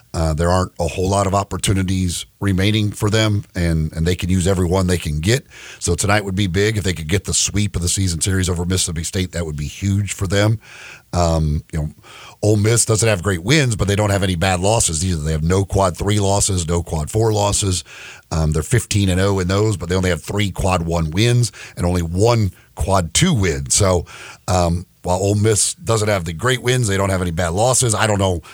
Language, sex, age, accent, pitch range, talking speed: English, male, 40-59, American, 90-105 Hz, 235 wpm